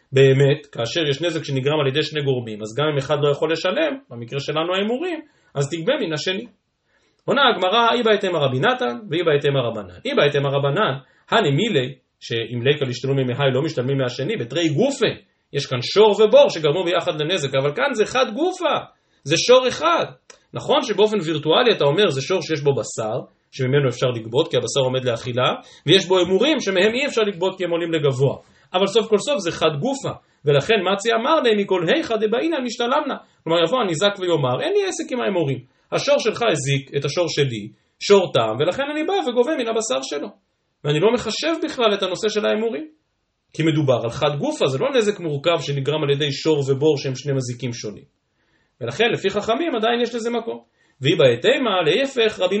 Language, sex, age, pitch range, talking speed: Hebrew, male, 30-49, 140-220 Hz, 170 wpm